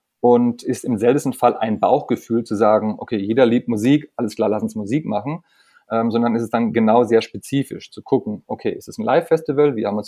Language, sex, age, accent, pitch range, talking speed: German, male, 30-49, German, 110-125 Hz, 220 wpm